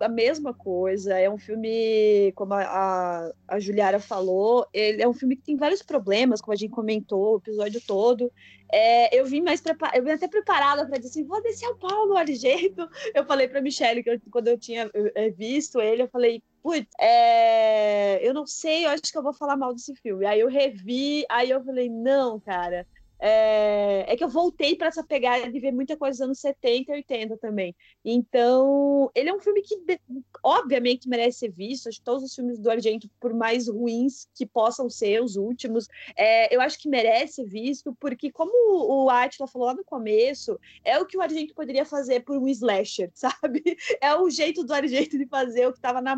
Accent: Brazilian